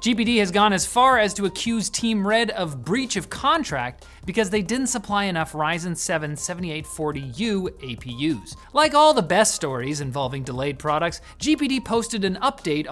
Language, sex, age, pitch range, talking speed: English, male, 30-49, 150-220 Hz, 165 wpm